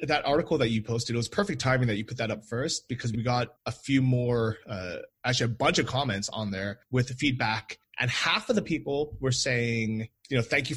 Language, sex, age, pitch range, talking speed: English, male, 20-39, 115-140 Hz, 240 wpm